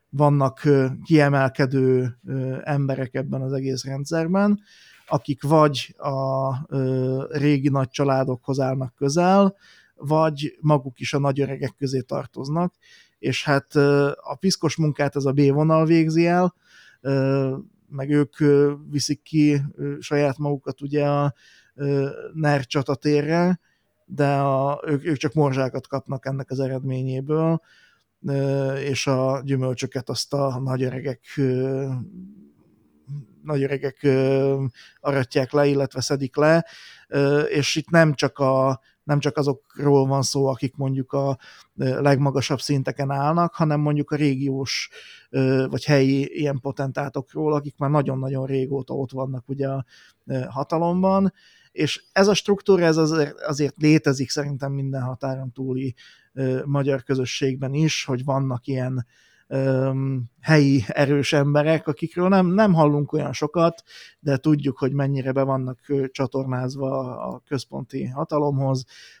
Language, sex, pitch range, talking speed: Hungarian, male, 135-150 Hz, 115 wpm